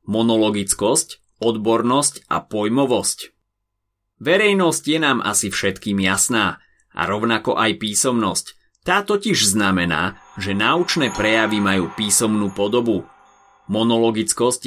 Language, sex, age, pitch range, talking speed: Slovak, male, 30-49, 100-130 Hz, 100 wpm